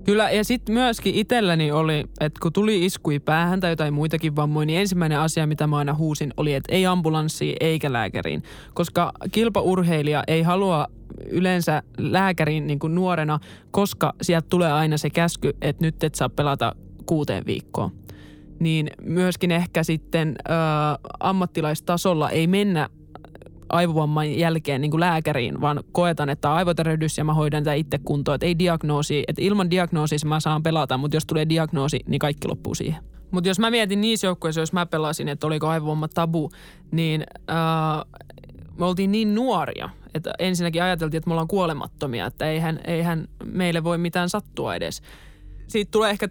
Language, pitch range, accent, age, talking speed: Finnish, 155-185 Hz, native, 20-39, 165 wpm